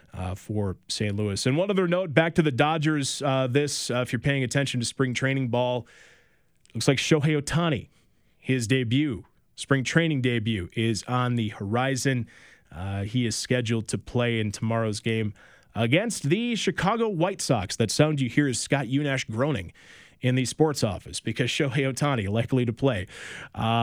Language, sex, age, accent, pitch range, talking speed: English, male, 30-49, American, 110-140 Hz, 175 wpm